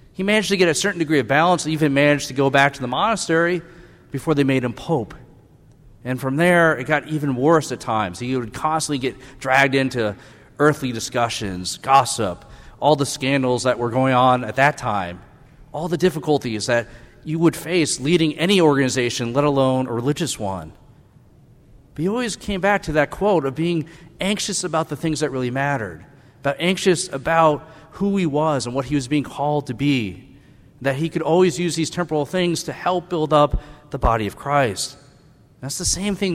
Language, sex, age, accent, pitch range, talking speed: English, male, 40-59, American, 125-160 Hz, 190 wpm